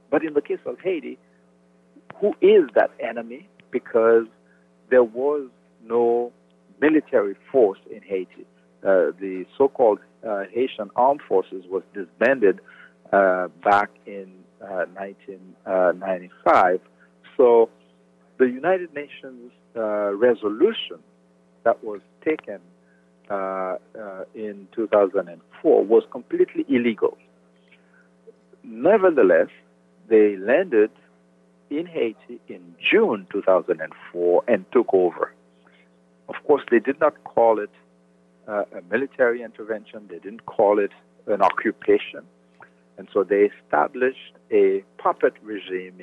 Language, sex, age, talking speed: English, male, 50-69, 105 wpm